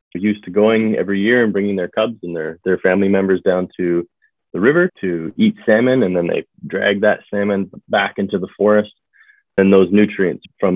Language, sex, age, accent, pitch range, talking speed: English, male, 30-49, American, 85-105 Hz, 195 wpm